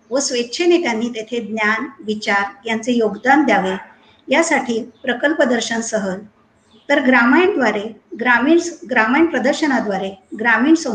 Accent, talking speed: native, 105 wpm